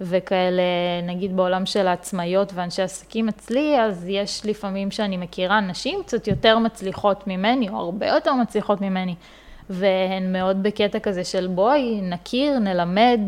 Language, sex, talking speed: Hebrew, female, 140 wpm